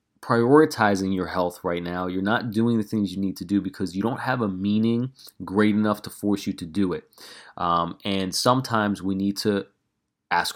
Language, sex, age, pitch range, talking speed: English, male, 30-49, 95-110 Hz, 200 wpm